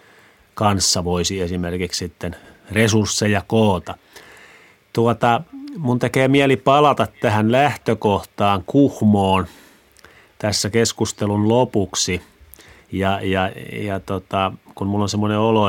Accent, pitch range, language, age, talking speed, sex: native, 95-110 Hz, Finnish, 30-49, 90 wpm, male